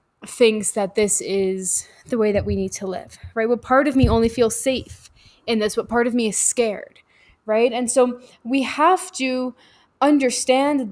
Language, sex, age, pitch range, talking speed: English, female, 10-29, 200-250 Hz, 185 wpm